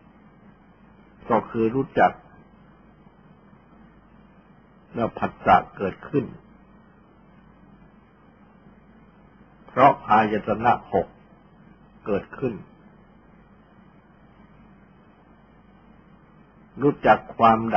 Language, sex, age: Thai, male, 60-79